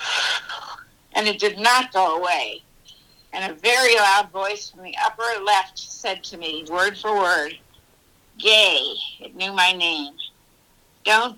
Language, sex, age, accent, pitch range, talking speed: English, female, 60-79, American, 185-235 Hz, 140 wpm